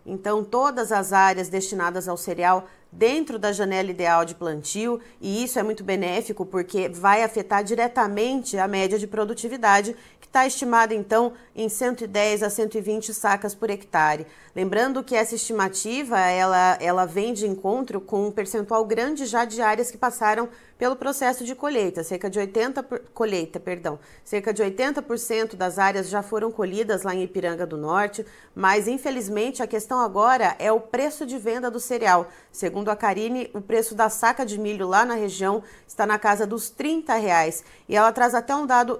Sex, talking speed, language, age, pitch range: female, 170 wpm, Portuguese, 30-49, 195-240 Hz